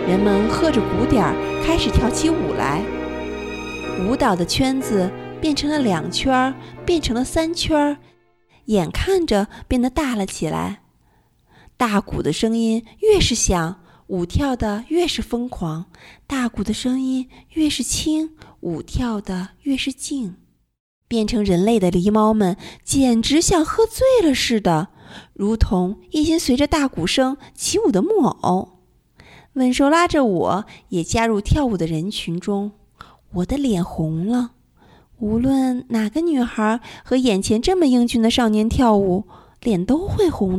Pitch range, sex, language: 195-280 Hz, female, Chinese